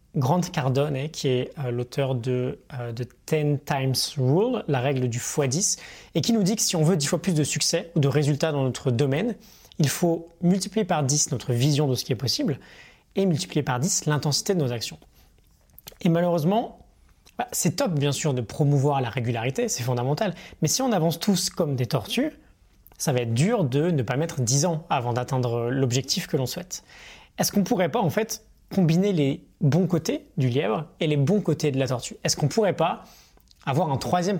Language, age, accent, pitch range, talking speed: French, 20-39, French, 130-175 Hz, 200 wpm